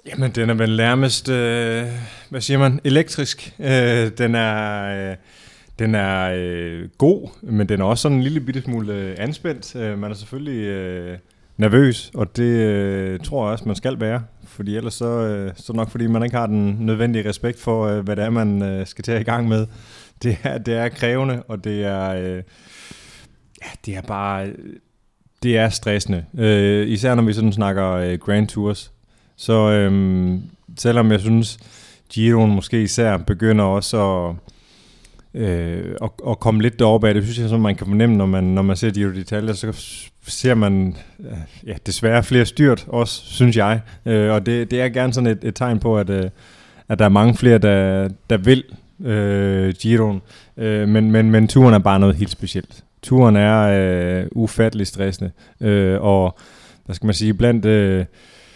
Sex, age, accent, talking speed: male, 30-49, native, 190 wpm